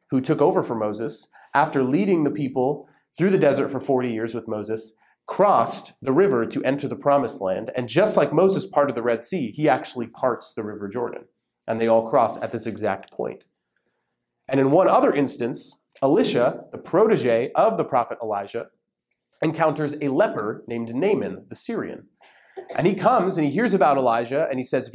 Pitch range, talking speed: 115-185 Hz, 190 wpm